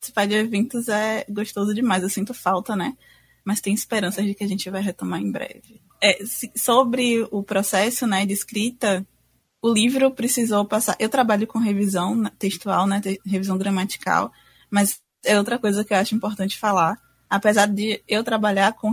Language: Portuguese